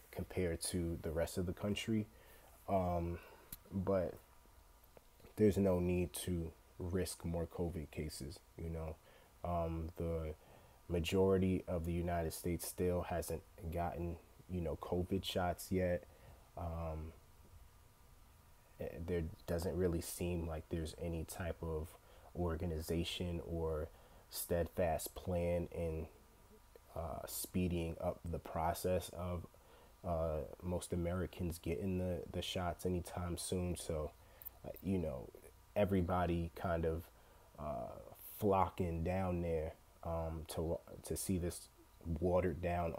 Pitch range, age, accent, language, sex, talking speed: 80-90 Hz, 30-49, American, English, male, 115 wpm